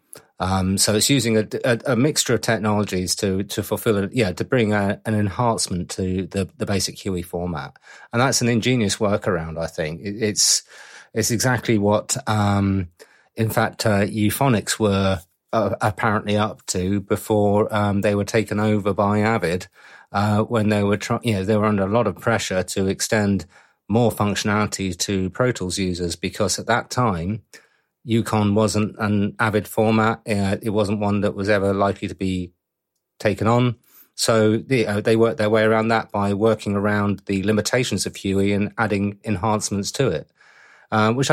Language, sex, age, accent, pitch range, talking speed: English, male, 30-49, British, 100-115 Hz, 175 wpm